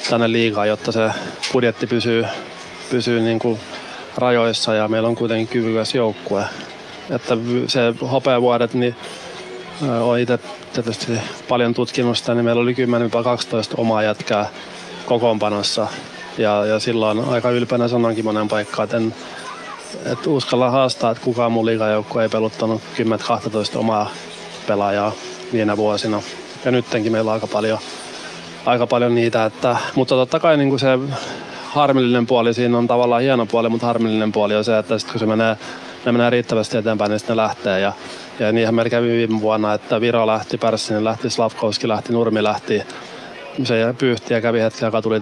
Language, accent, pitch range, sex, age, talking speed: Finnish, native, 110-120 Hz, male, 20-39, 145 wpm